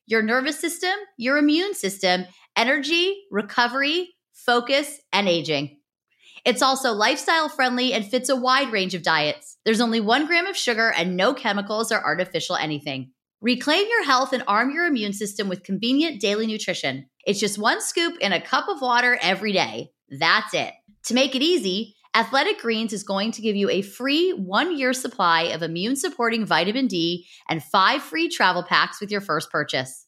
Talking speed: 175 wpm